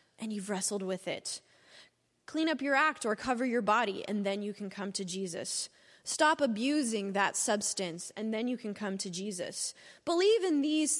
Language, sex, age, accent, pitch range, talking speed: English, female, 20-39, American, 190-250 Hz, 185 wpm